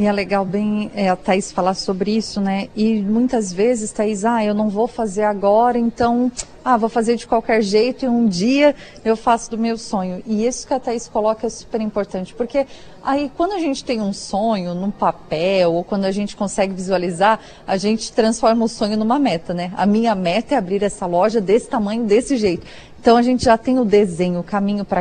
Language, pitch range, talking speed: Portuguese, 200-240 Hz, 215 wpm